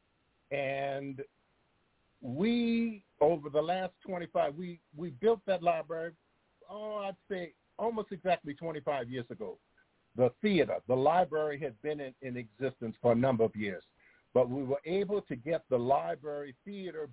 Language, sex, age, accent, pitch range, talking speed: English, male, 50-69, American, 140-195 Hz, 145 wpm